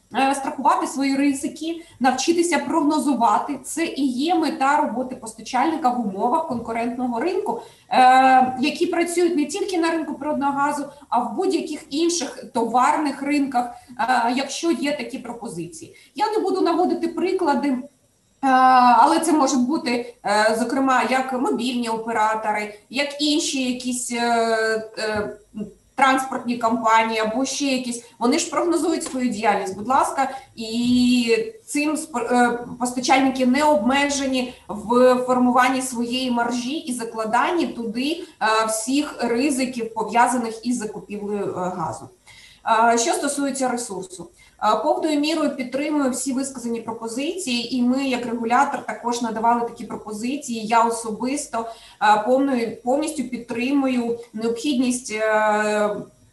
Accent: native